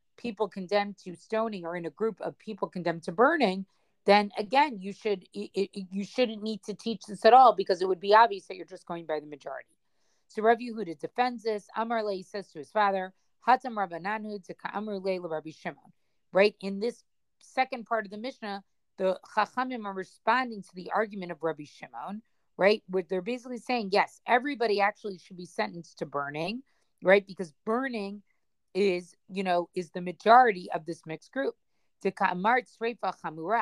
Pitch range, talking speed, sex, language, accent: 185-230 Hz, 170 wpm, female, English, American